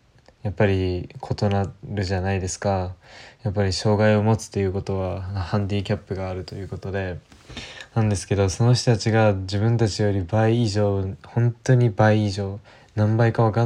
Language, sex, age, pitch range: Japanese, male, 20-39, 100-115 Hz